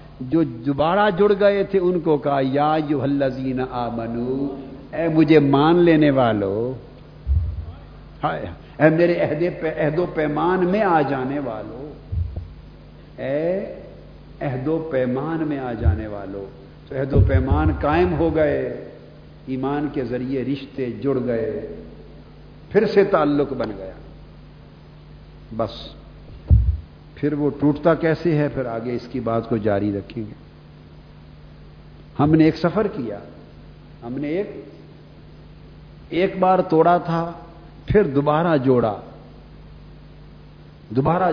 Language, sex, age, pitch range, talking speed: Urdu, male, 50-69, 115-160 Hz, 120 wpm